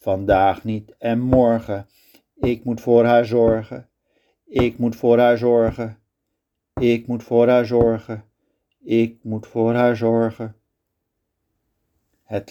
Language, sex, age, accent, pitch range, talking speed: Dutch, male, 50-69, Dutch, 100-120 Hz, 125 wpm